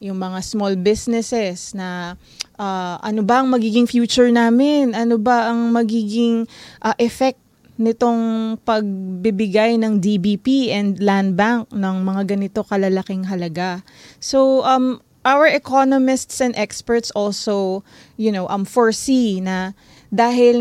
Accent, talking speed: native, 125 wpm